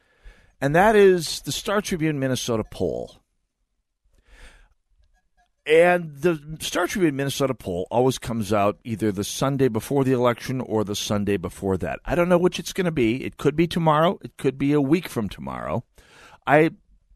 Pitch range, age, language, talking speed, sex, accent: 110-155 Hz, 50-69, English, 170 wpm, male, American